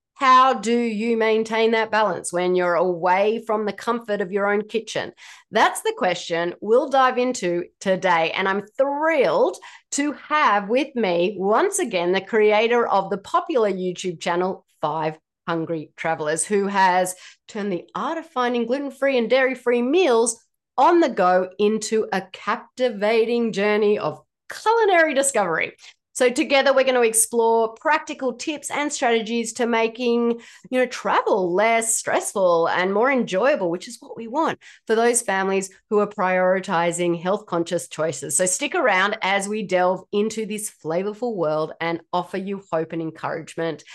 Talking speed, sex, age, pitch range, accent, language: 155 wpm, female, 30-49, 180-240 Hz, Australian, English